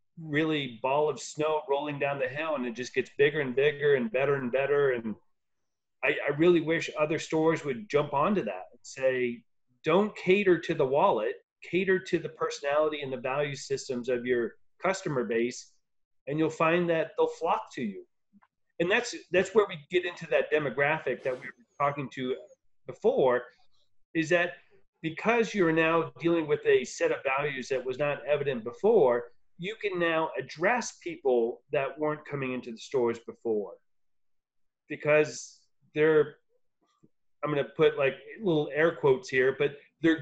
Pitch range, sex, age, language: 135-185 Hz, male, 40-59, English